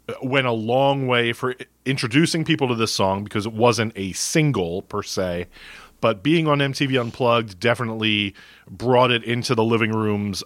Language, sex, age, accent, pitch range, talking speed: English, male, 30-49, American, 110-145 Hz, 165 wpm